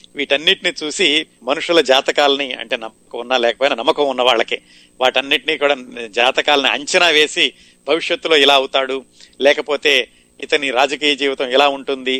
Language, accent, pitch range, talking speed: Telugu, native, 120-150 Hz, 125 wpm